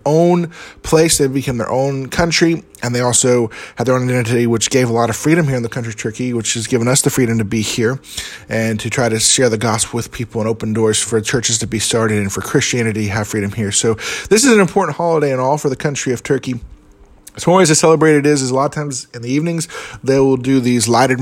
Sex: male